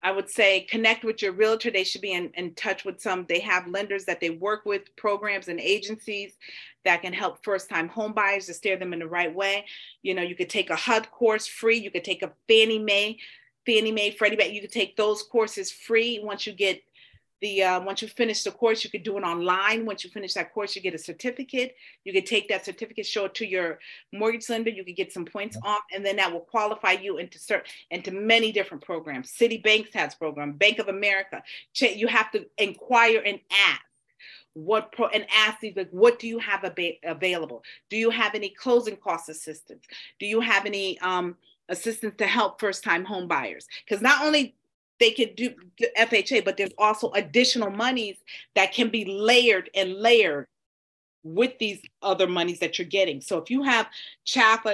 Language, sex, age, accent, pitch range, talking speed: English, female, 40-59, American, 185-220 Hz, 210 wpm